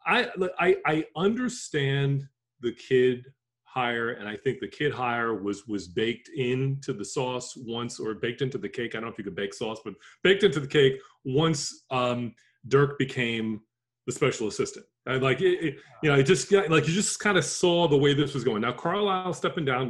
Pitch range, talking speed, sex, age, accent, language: 120-155 Hz, 210 wpm, male, 30-49, American, English